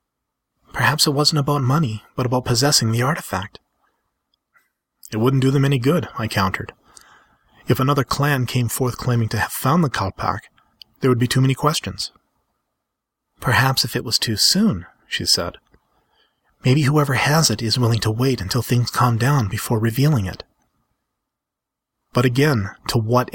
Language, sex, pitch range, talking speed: English, male, 110-135 Hz, 160 wpm